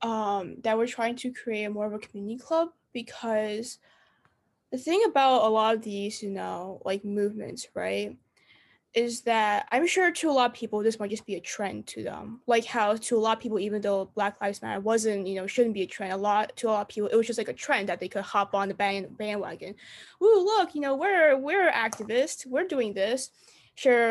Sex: female